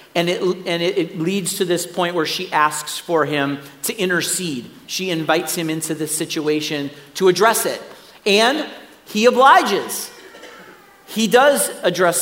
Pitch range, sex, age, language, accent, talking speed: 180-220 Hz, male, 40-59, English, American, 150 wpm